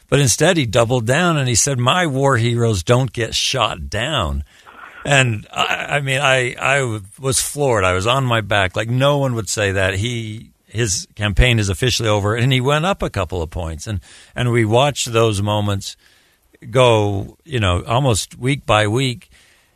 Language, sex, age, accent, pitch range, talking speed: English, male, 60-79, American, 100-135 Hz, 185 wpm